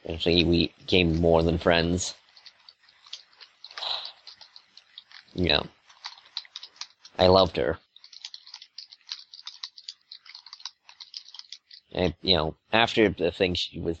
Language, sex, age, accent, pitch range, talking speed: English, male, 20-39, American, 80-95 Hz, 85 wpm